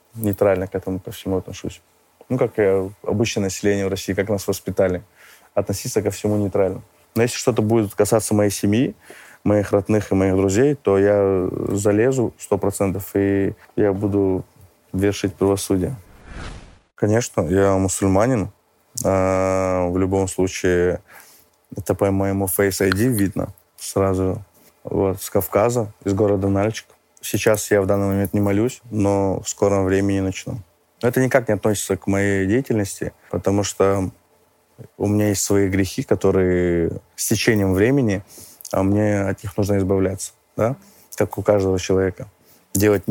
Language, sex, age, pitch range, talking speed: Russian, male, 20-39, 95-105 Hz, 145 wpm